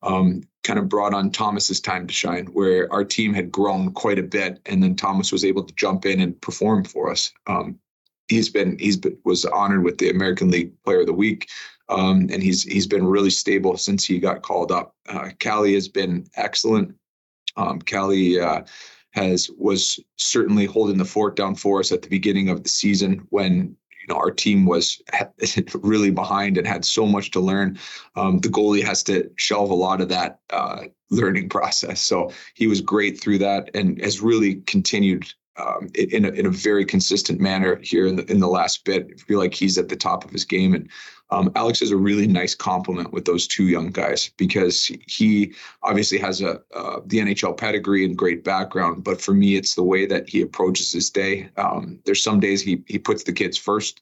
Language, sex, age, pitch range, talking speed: English, male, 30-49, 95-105 Hz, 205 wpm